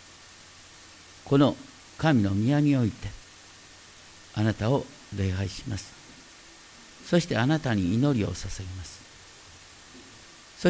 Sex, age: male, 50-69